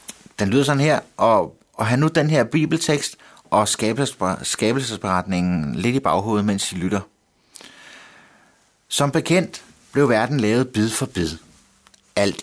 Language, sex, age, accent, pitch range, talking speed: Danish, male, 60-79, native, 85-120 Hz, 135 wpm